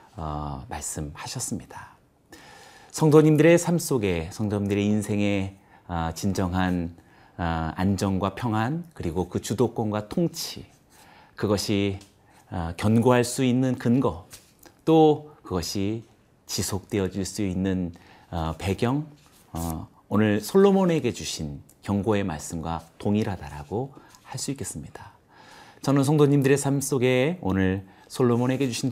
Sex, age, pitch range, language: male, 40-59, 95-130 Hz, Korean